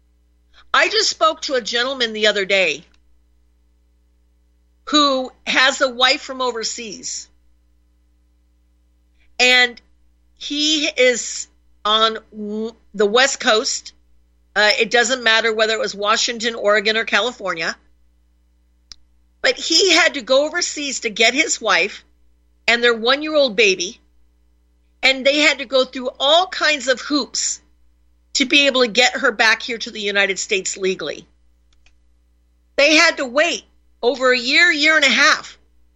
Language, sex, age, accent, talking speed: English, female, 50-69, American, 135 wpm